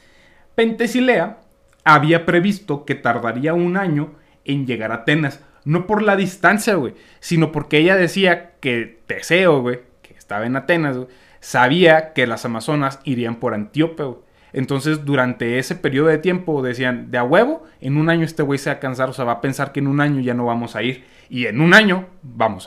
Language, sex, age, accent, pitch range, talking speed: Spanish, male, 30-49, Mexican, 125-180 Hz, 190 wpm